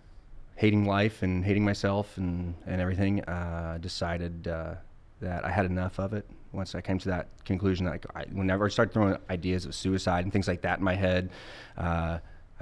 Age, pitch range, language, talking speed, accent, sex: 30-49, 90-105 Hz, English, 185 wpm, American, male